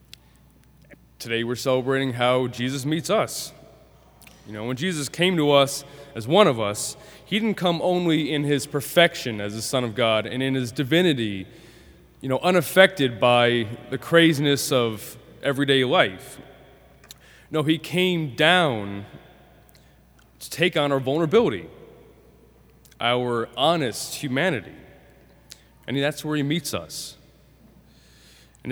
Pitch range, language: 120-160 Hz, English